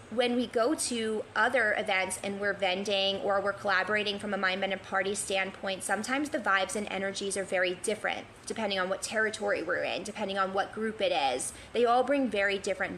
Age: 20-39